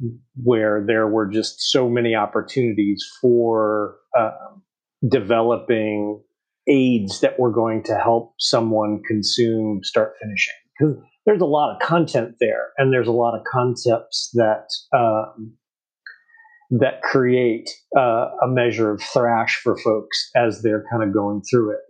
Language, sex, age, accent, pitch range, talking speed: English, male, 40-59, American, 115-155 Hz, 140 wpm